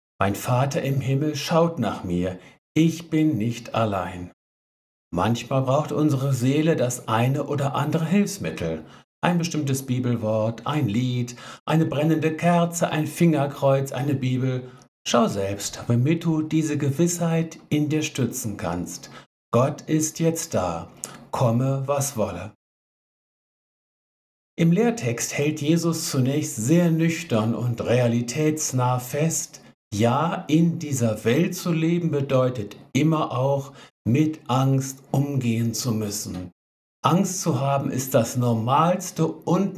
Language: German